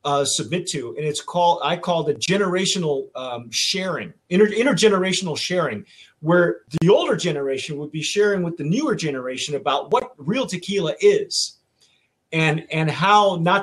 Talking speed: 145 wpm